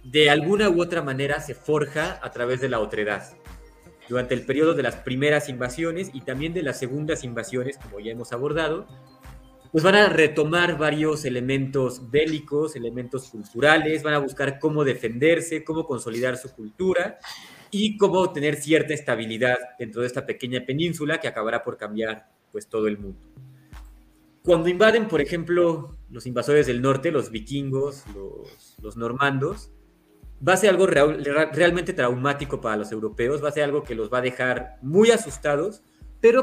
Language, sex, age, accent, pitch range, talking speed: Spanish, male, 30-49, Mexican, 120-160 Hz, 165 wpm